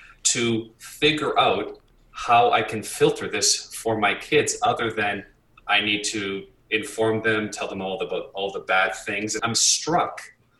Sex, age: male, 30-49